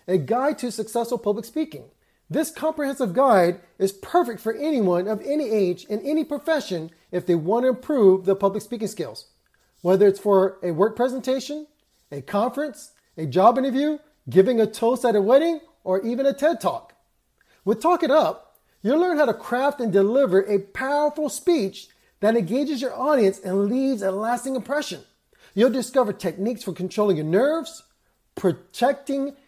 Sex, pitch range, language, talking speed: male, 195-280 Hz, English, 165 wpm